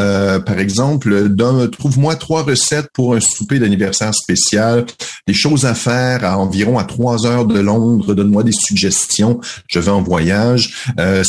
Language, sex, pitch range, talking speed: French, male, 100-125 Hz, 165 wpm